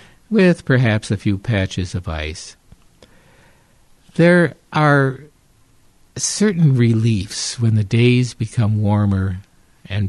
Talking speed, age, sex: 100 wpm, 60-79, male